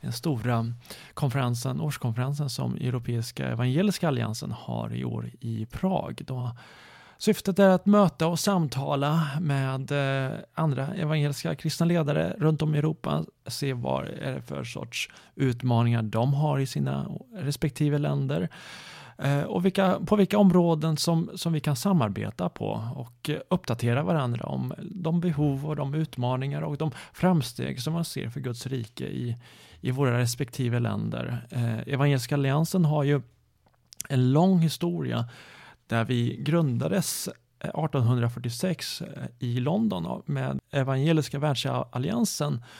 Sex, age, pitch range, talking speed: male, 30-49, 125-160 Hz, 125 wpm